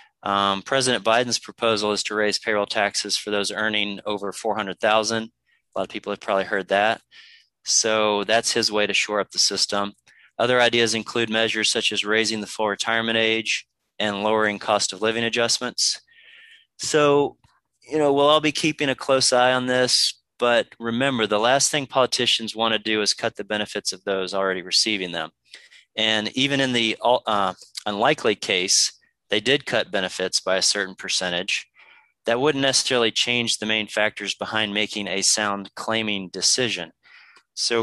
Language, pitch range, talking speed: English, 100-115 Hz, 170 wpm